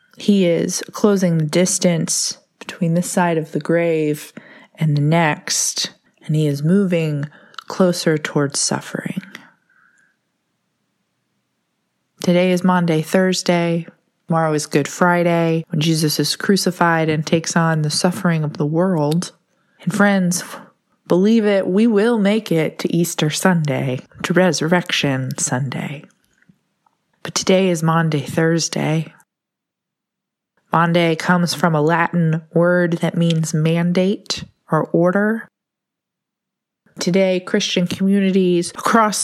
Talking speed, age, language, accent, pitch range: 115 wpm, 20-39, English, American, 165-195 Hz